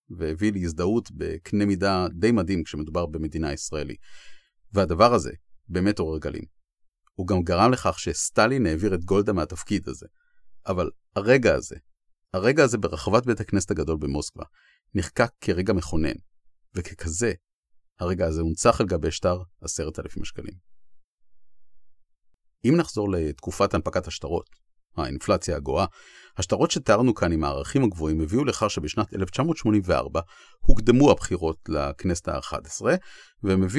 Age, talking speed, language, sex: 30-49, 125 wpm, Hebrew, male